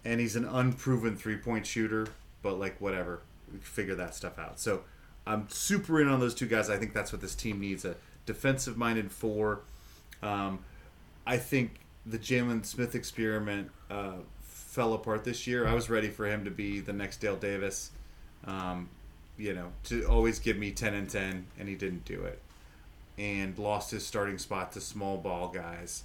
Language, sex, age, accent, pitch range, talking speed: English, male, 30-49, American, 90-115 Hz, 185 wpm